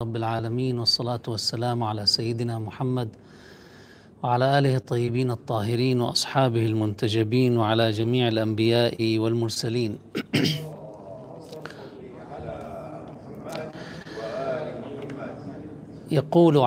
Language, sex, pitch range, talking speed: Arabic, male, 115-135 Hz, 65 wpm